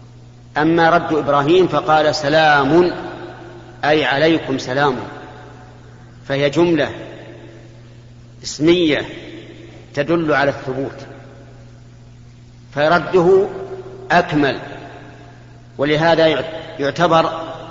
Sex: male